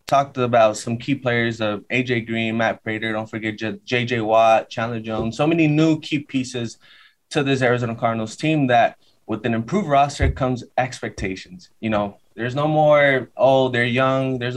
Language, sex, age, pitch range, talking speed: English, male, 20-39, 110-135 Hz, 175 wpm